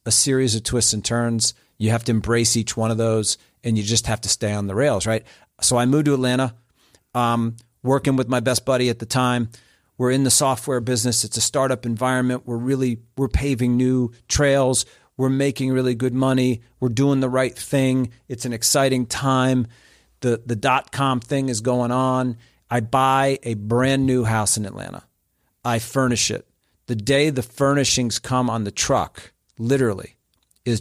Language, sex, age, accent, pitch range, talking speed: English, male, 40-59, American, 115-130 Hz, 185 wpm